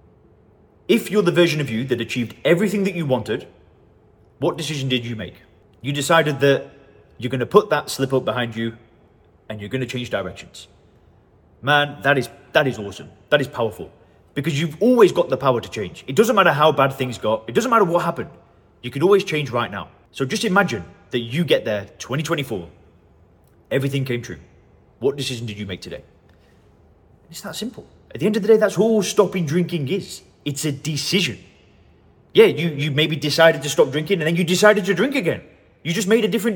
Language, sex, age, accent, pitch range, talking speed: English, male, 30-49, British, 105-165 Hz, 200 wpm